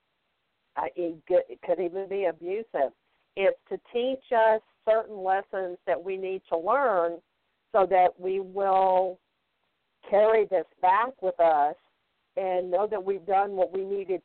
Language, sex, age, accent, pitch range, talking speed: English, female, 50-69, American, 175-215 Hz, 140 wpm